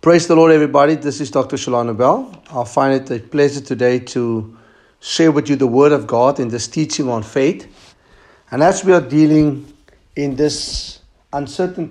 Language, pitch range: English, 125-145 Hz